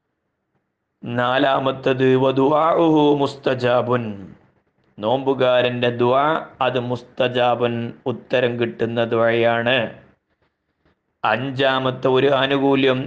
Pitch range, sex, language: 125-145 Hz, male, Malayalam